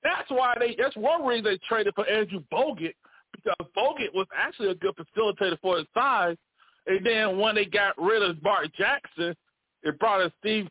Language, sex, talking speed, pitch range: English, male, 190 wpm, 170-240 Hz